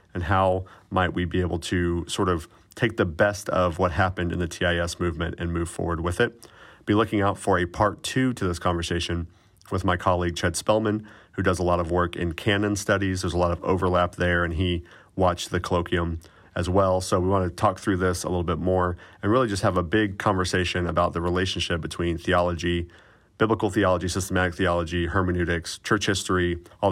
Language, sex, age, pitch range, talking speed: English, male, 40-59, 85-95 Hz, 205 wpm